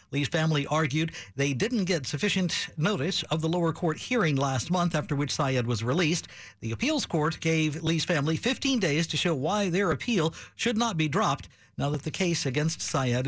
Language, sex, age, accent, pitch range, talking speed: English, male, 60-79, American, 140-195 Hz, 195 wpm